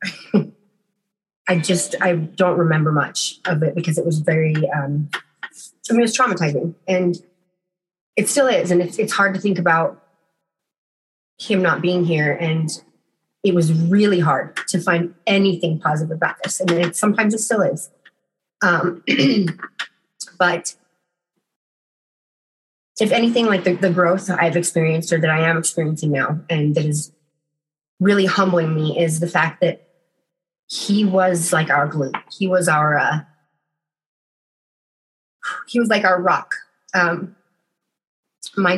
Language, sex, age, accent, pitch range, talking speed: English, female, 30-49, American, 165-195 Hz, 145 wpm